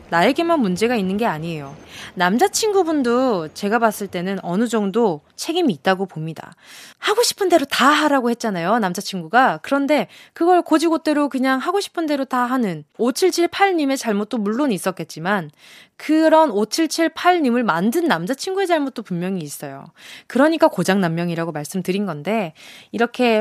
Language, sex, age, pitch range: Korean, female, 20-39, 195-295 Hz